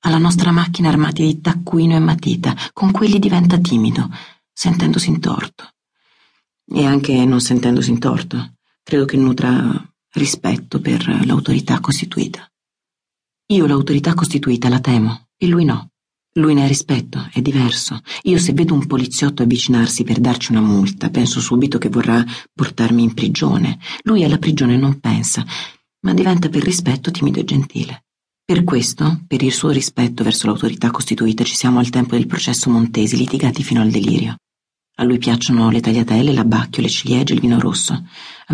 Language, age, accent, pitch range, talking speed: Italian, 40-59, native, 120-160 Hz, 160 wpm